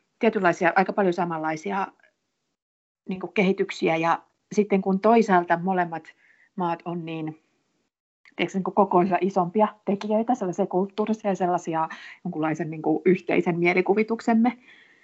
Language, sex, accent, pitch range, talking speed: Finnish, female, native, 175-210 Hz, 105 wpm